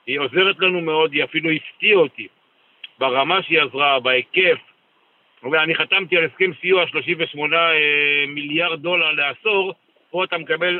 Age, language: 60-79, Hebrew